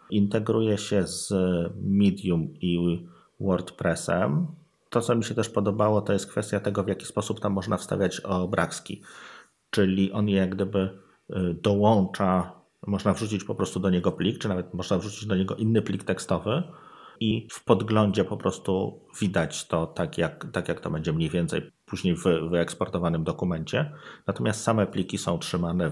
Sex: male